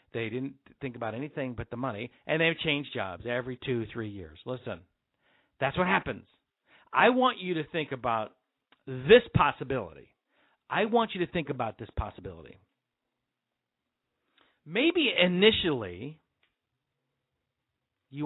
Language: English